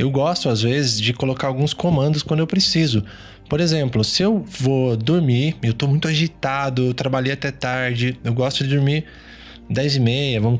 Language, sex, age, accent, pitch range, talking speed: Portuguese, male, 20-39, Brazilian, 115-155 Hz, 185 wpm